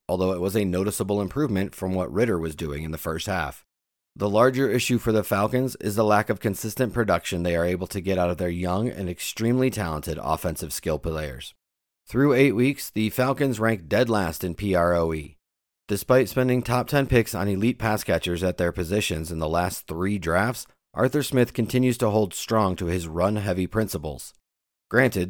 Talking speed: 190 wpm